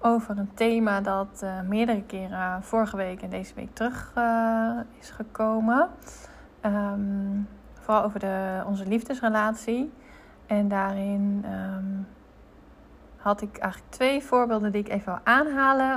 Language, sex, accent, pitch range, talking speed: Dutch, female, Dutch, 195-230 Hz, 125 wpm